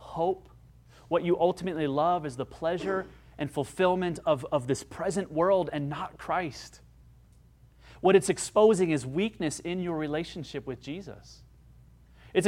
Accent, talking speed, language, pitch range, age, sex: American, 140 wpm, English, 120-195 Hz, 30-49, male